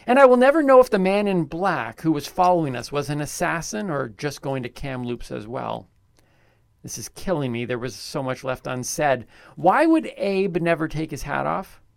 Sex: male